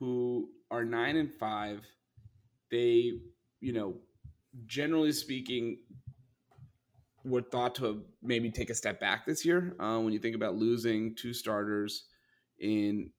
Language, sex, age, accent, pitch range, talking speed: English, male, 30-49, American, 105-120 Hz, 130 wpm